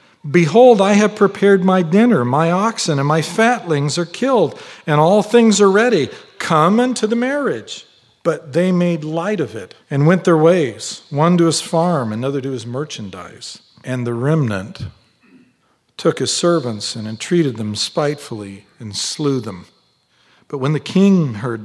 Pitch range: 120-175 Hz